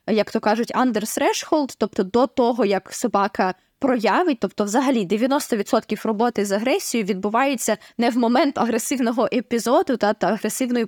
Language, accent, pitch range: Ukrainian, native, 215-265 Hz